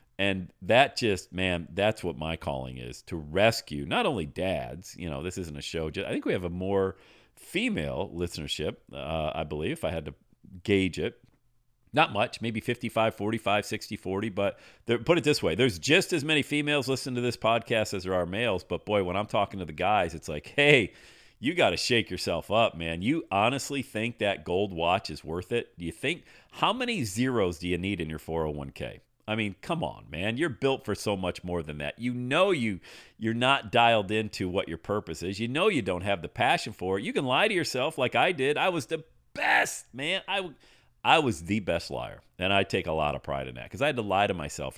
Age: 40-59